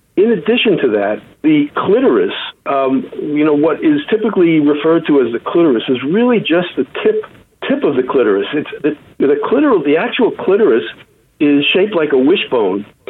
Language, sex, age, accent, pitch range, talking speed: English, male, 50-69, American, 145-230 Hz, 175 wpm